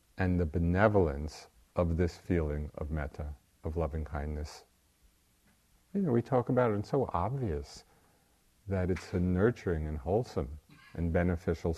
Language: English